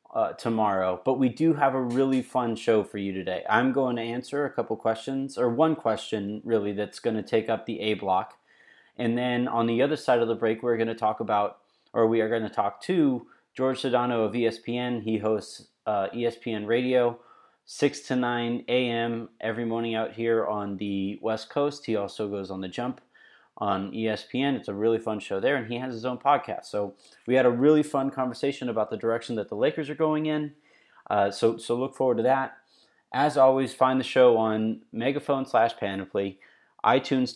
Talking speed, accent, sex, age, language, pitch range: 200 wpm, American, male, 30-49, English, 110-130 Hz